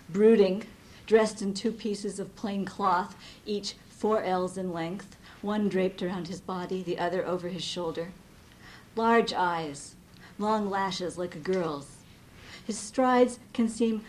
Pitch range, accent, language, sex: 180-225 Hz, American, English, female